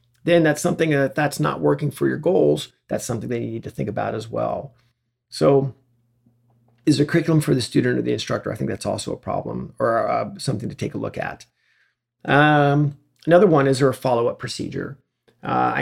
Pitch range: 120-150 Hz